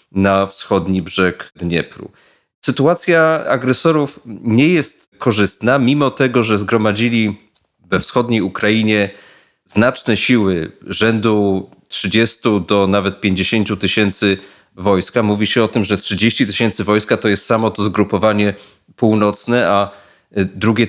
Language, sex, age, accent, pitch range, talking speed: Polish, male, 40-59, native, 100-120 Hz, 120 wpm